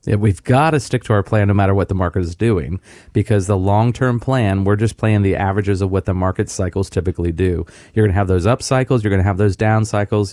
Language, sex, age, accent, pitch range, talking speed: English, male, 30-49, American, 100-130 Hz, 260 wpm